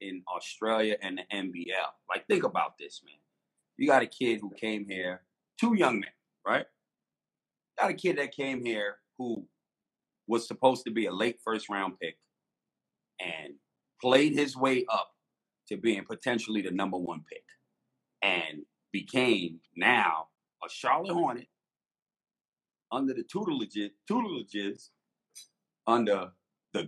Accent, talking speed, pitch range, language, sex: American, 135 wpm, 100-160 Hz, English, male